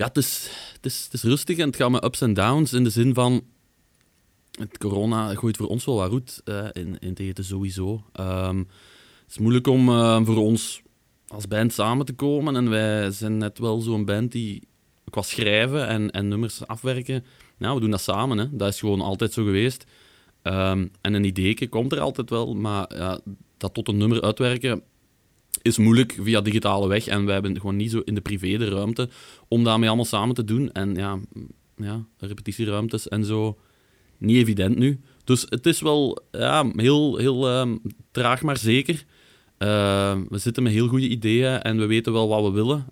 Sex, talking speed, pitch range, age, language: male, 195 wpm, 100-125 Hz, 20-39, Dutch